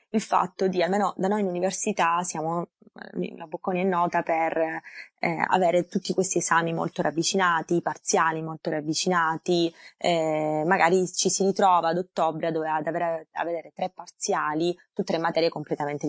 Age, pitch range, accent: 20-39, 160-190 Hz, native